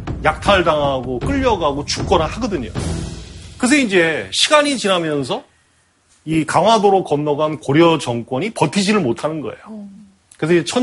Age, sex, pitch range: 30-49, male, 115-195 Hz